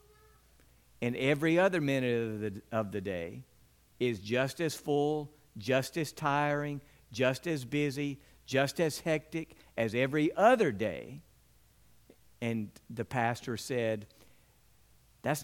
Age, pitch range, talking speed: 50-69, 120-165 Hz, 120 wpm